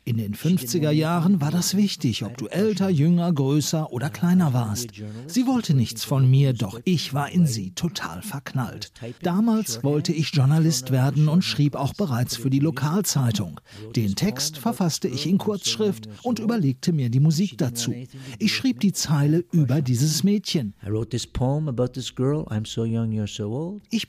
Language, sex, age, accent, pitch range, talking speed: German, male, 50-69, German, 125-180 Hz, 145 wpm